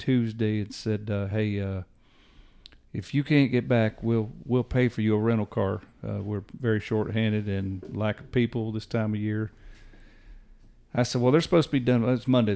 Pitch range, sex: 105-120 Hz, male